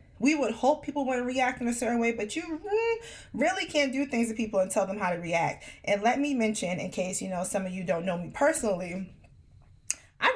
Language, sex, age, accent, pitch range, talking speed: English, female, 20-39, American, 175-230 Hz, 230 wpm